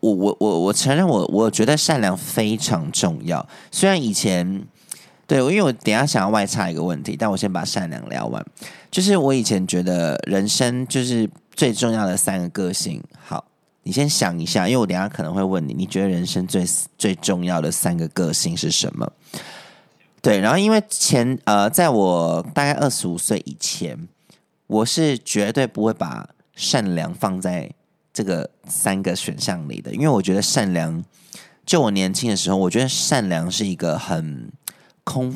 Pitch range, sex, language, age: 90-130 Hz, male, Chinese, 30-49